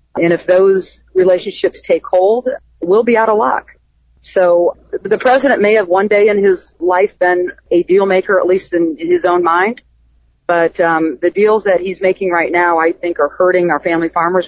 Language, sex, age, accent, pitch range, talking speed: English, female, 40-59, American, 170-200 Hz, 195 wpm